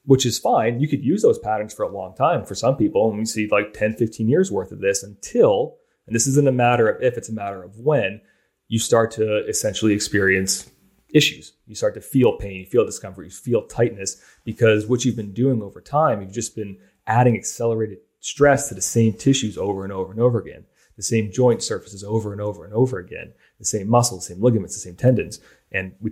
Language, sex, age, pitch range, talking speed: English, male, 30-49, 100-125 Hz, 225 wpm